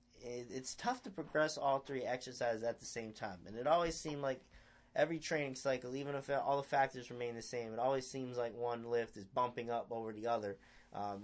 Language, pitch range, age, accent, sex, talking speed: English, 115-135 Hz, 30-49, American, male, 215 wpm